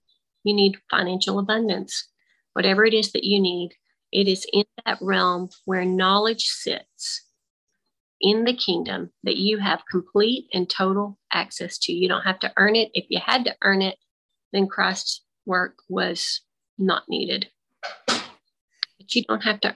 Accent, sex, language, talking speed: American, female, English, 160 wpm